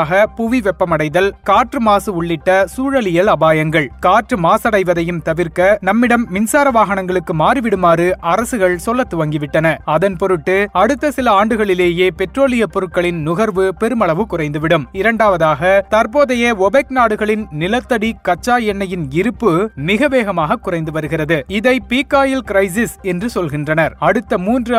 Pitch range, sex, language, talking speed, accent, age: 175-230 Hz, male, Tamil, 105 wpm, native, 30-49